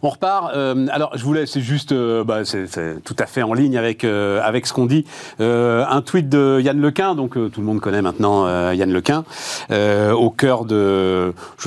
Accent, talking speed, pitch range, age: French, 225 wpm, 120-175 Hz, 40-59